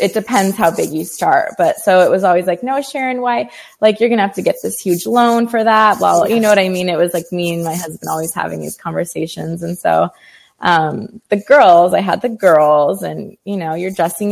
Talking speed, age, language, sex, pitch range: 245 wpm, 20-39, English, female, 170-200 Hz